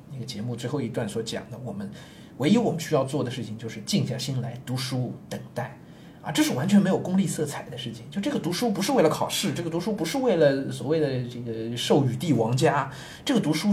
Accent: native